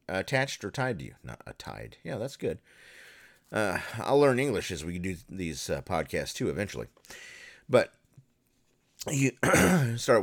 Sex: male